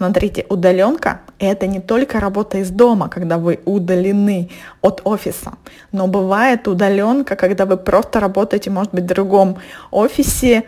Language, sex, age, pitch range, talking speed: Russian, female, 20-39, 190-235 Hz, 140 wpm